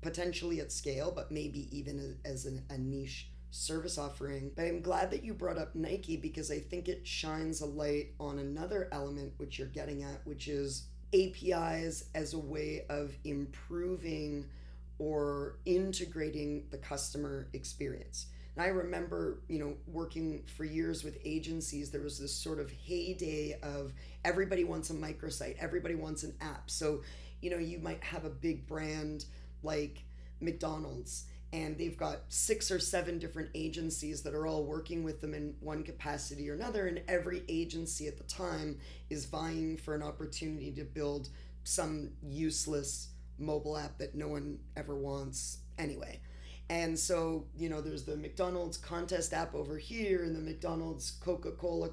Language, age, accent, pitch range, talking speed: English, 30-49, American, 140-165 Hz, 160 wpm